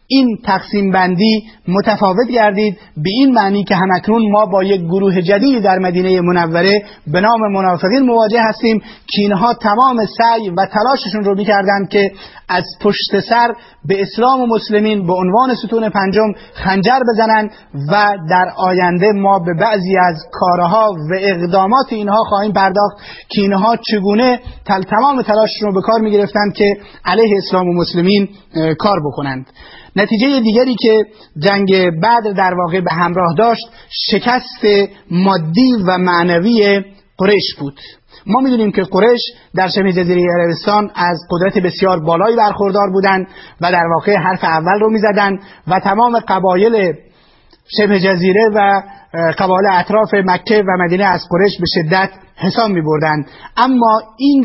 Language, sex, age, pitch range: Persian, male, 30-49, 185-220 Hz